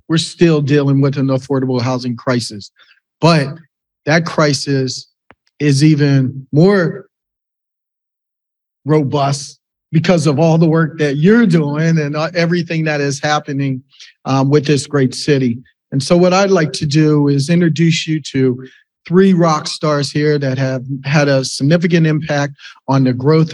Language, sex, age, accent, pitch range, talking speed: English, male, 40-59, American, 140-170 Hz, 145 wpm